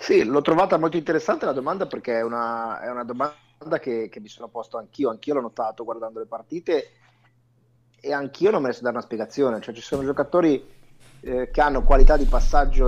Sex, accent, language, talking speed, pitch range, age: male, native, Italian, 200 wpm, 115-135 Hz, 30-49